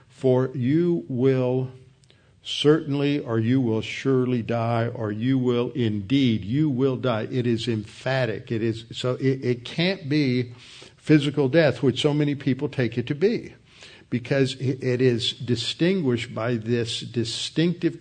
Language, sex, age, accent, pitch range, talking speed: English, male, 60-79, American, 115-135 Hz, 145 wpm